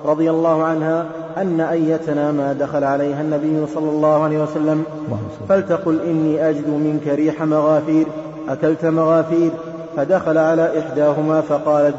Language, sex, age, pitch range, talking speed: Arabic, male, 30-49, 150-160 Hz, 125 wpm